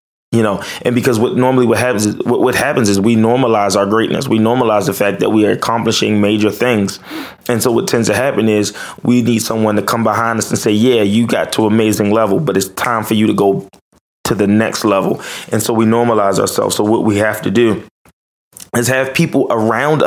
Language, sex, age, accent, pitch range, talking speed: English, male, 20-39, American, 105-125 Hz, 225 wpm